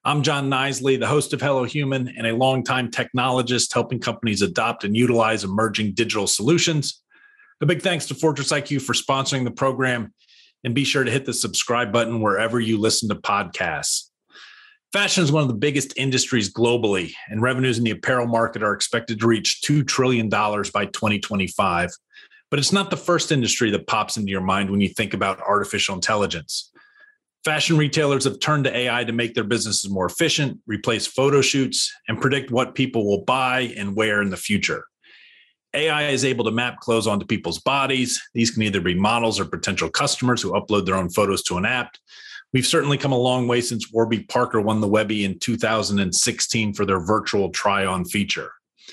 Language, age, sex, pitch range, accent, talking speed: English, 40-59, male, 110-140 Hz, American, 190 wpm